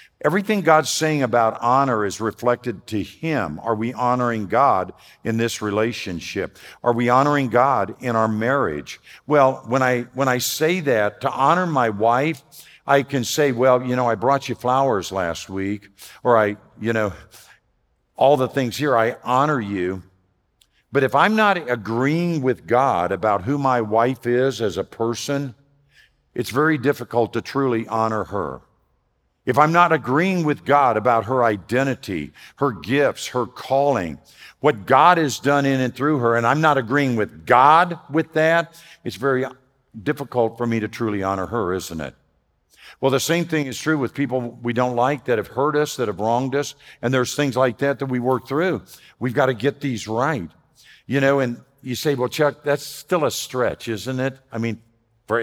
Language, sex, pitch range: English, male, 115-145 Hz